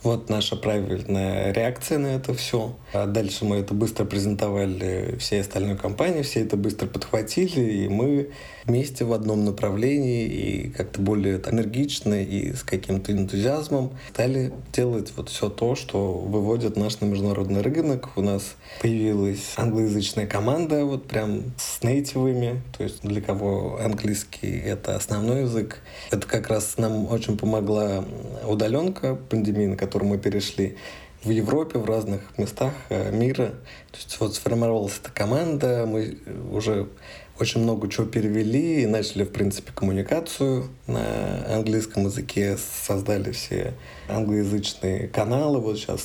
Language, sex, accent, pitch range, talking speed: Russian, male, native, 100-125 Hz, 135 wpm